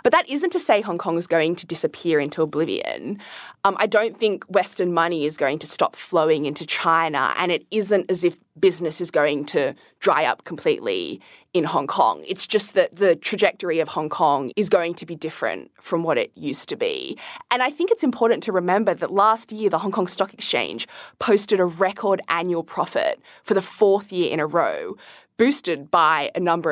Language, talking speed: English, 205 wpm